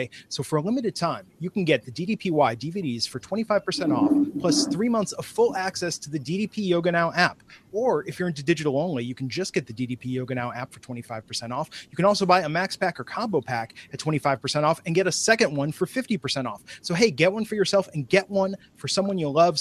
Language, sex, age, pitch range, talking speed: English, male, 30-49, 135-185 Hz, 240 wpm